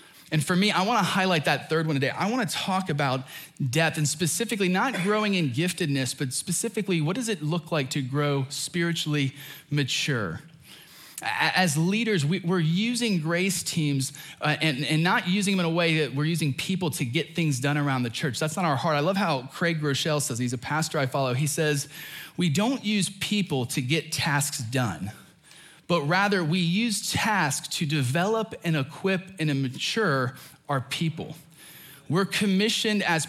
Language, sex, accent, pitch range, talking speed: English, male, American, 145-185 Hz, 175 wpm